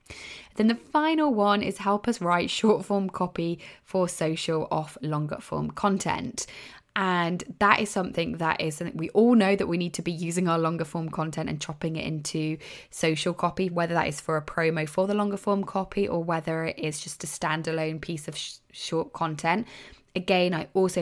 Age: 20-39